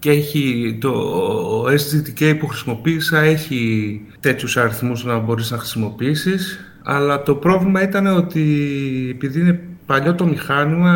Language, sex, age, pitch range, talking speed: Greek, male, 30-49, 130-155 Hz, 125 wpm